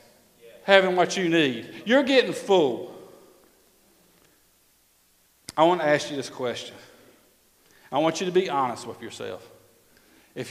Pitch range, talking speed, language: 130-175 Hz, 130 wpm, English